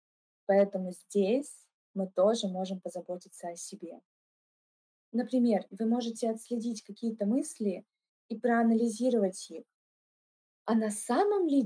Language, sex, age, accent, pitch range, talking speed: Russian, female, 20-39, native, 195-235 Hz, 110 wpm